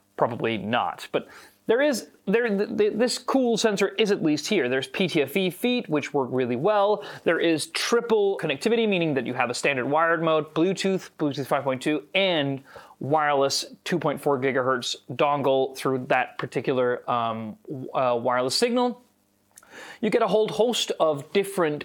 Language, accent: English, American